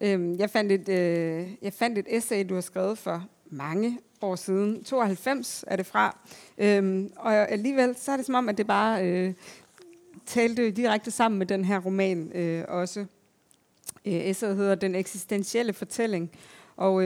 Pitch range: 180-220 Hz